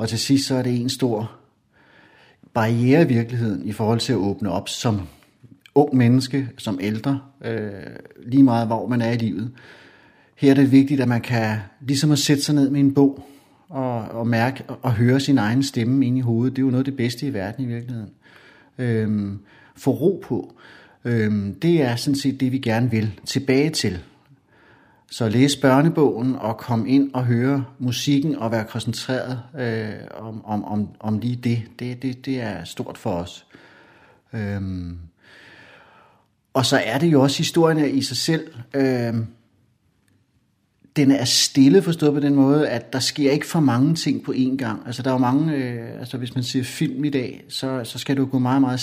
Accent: native